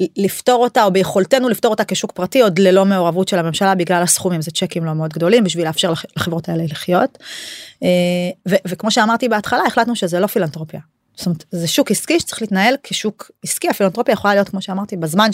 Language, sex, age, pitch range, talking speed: Hebrew, female, 30-49, 180-230 Hz, 190 wpm